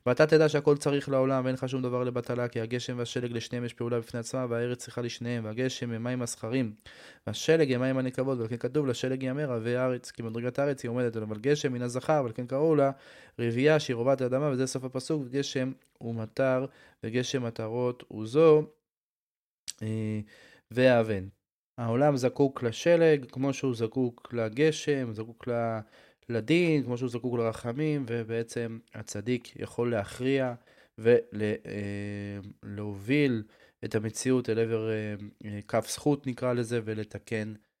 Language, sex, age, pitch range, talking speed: Hebrew, male, 20-39, 110-130 Hz, 145 wpm